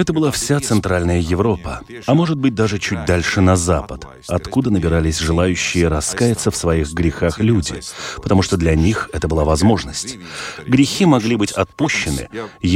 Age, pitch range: 30-49, 85-115 Hz